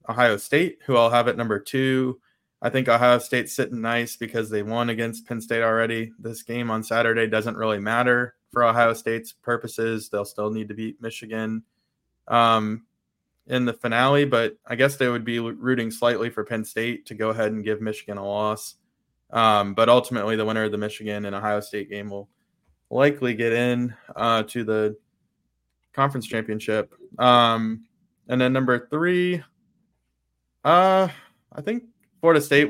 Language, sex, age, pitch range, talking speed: English, male, 20-39, 110-125 Hz, 170 wpm